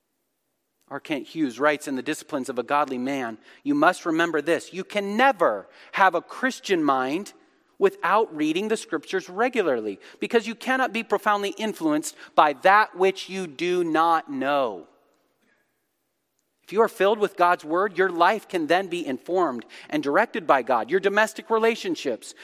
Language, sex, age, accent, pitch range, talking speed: English, male, 40-59, American, 155-235 Hz, 160 wpm